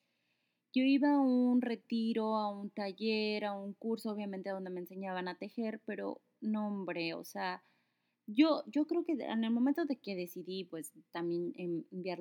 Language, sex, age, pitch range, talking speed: Spanish, female, 30-49, 175-220 Hz, 170 wpm